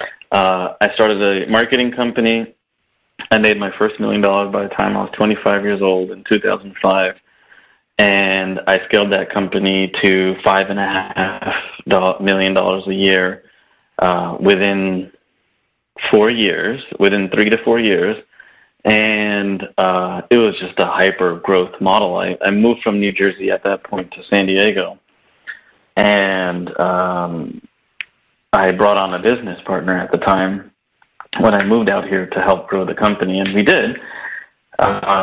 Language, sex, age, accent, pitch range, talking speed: English, male, 20-39, American, 95-105 Hz, 145 wpm